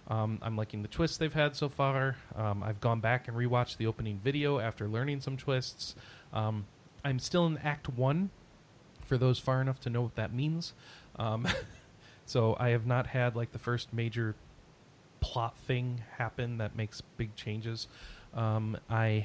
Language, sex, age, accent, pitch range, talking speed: English, male, 30-49, American, 110-145 Hz, 175 wpm